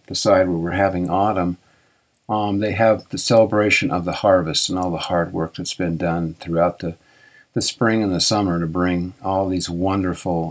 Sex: male